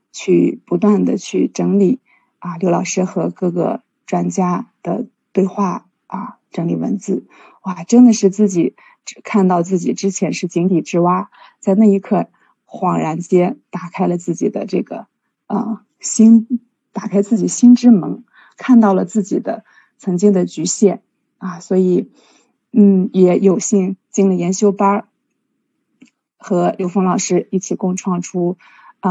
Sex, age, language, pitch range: female, 20-39, Chinese, 185-230 Hz